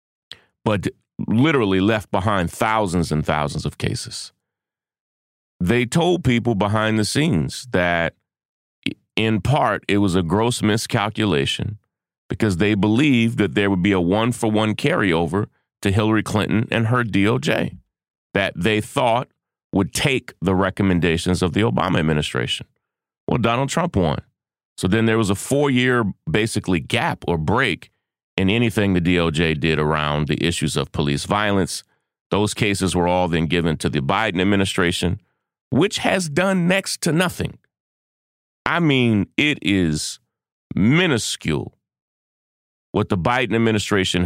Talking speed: 135 wpm